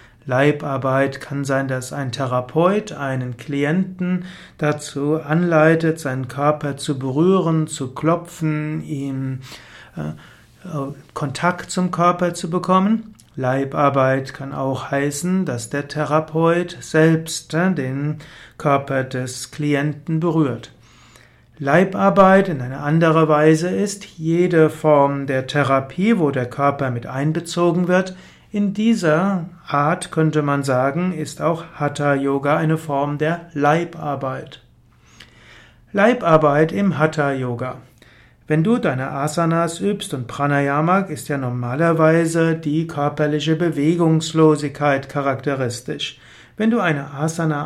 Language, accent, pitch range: German, German, 140-175 Hz